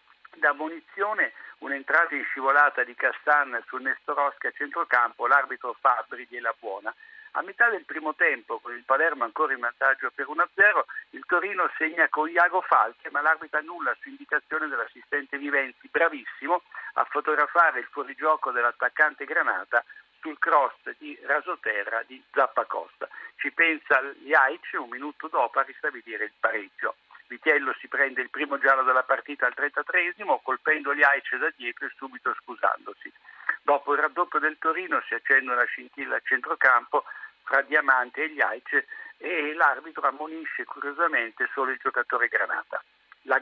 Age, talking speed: 60-79, 150 wpm